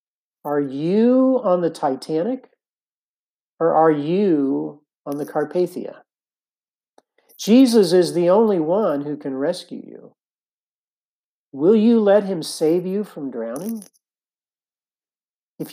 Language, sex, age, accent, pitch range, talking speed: English, male, 50-69, American, 155-190 Hz, 110 wpm